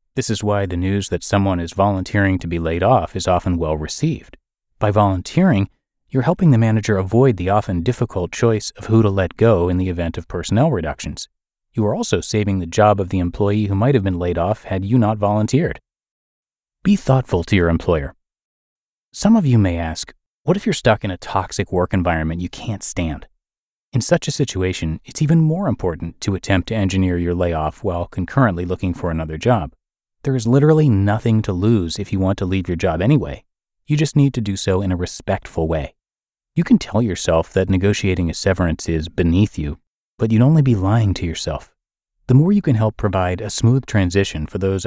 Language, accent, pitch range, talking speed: English, American, 90-125 Hz, 205 wpm